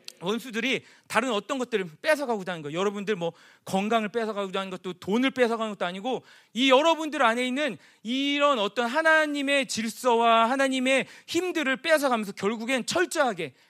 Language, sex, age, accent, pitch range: Korean, male, 40-59, native, 210-280 Hz